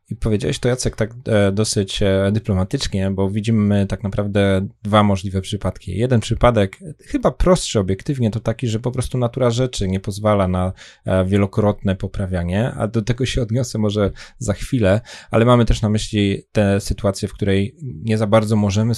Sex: male